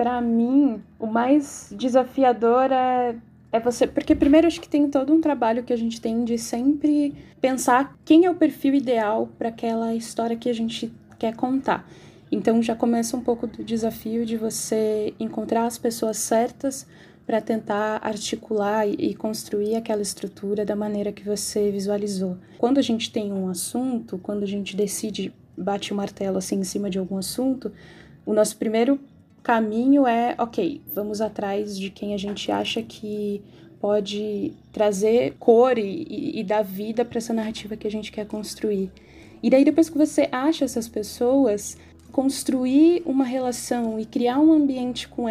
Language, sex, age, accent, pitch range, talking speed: Portuguese, female, 10-29, Brazilian, 215-255 Hz, 165 wpm